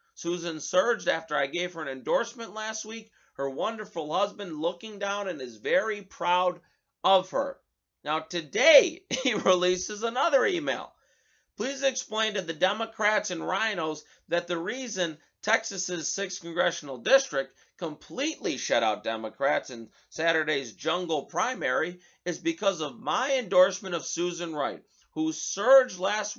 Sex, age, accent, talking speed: male, 30-49, American, 135 wpm